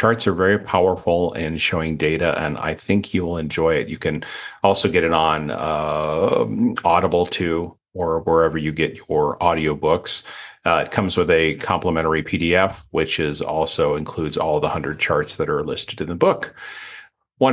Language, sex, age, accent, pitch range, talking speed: English, male, 40-59, American, 85-115 Hz, 175 wpm